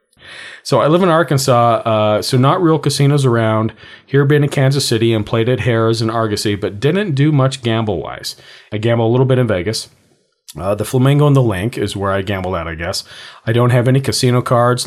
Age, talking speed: 40-59, 220 wpm